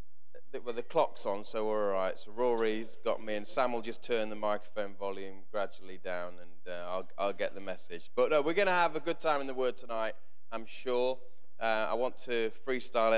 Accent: British